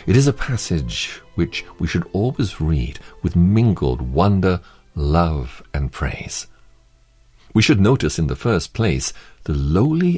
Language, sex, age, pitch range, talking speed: English, male, 60-79, 75-110 Hz, 140 wpm